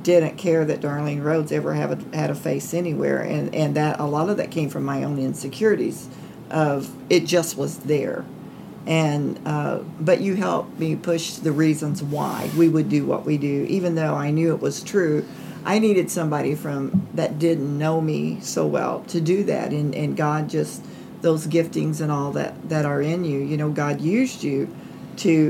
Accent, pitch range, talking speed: American, 145-175 Hz, 195 wpm